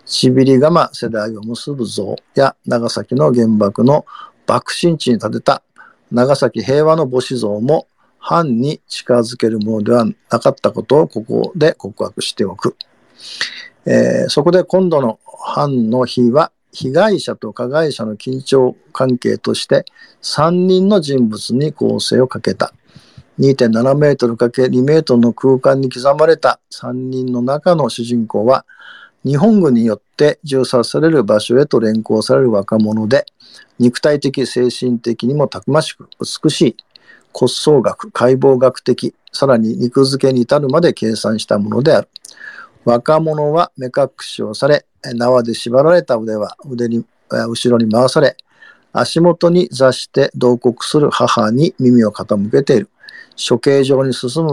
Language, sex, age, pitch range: Japanese, male, 50-69, 115-140 Hz